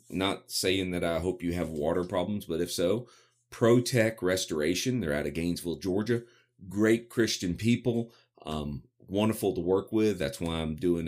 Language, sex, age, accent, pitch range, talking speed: English, male, 40-59, American, 80-110 Hz, 170 wpm